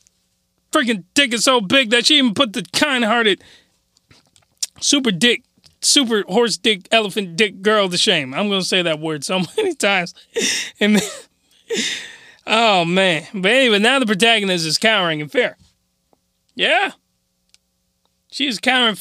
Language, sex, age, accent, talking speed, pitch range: English, male, 30-49, American, 150 wpm, 165-235 Hz